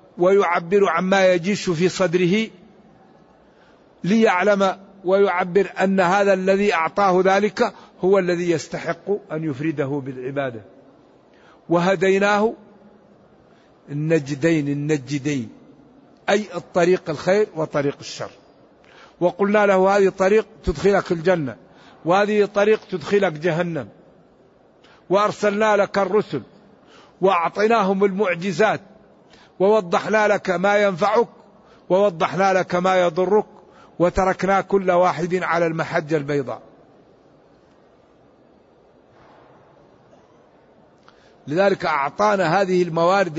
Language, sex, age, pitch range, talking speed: Arabic, male, 60-79, 165-200 Hz, 80 wpm